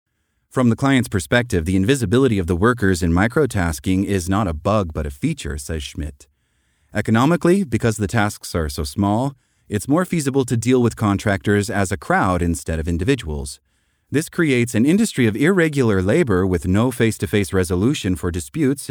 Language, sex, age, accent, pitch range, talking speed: English, male, 30-49, American, 90-125 Hz, 170 wpm